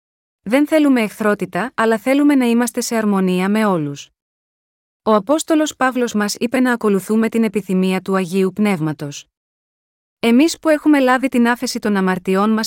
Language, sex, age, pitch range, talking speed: Greek, female, 30-49, 200-245 Hz, 150 wpm